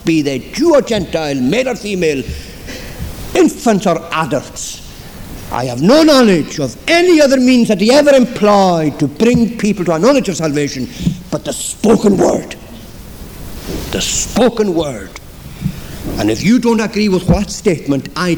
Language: English